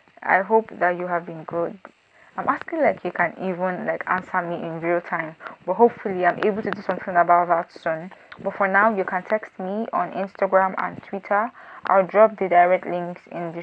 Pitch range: 175-210 Hz